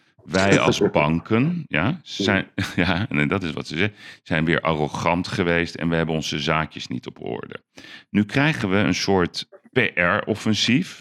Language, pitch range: Dutch, 80-110 Hz